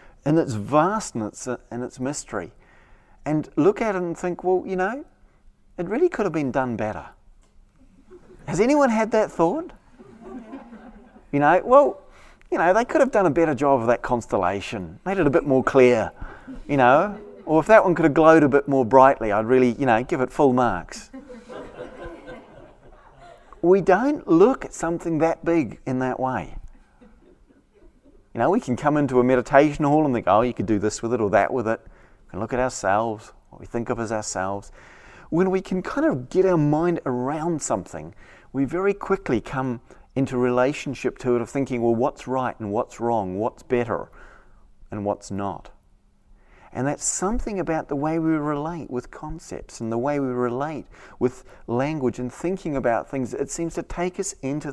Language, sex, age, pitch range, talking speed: English, male, 30-49, 120-170 Hz, 185 wpm